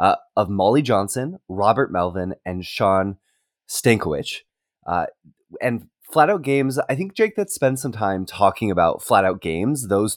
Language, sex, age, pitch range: English, male, 20-39, 105-150 Hz